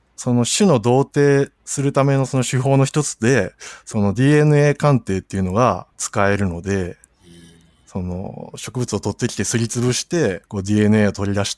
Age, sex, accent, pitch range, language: 20-39, male, native, 100-125 Hz, Japanese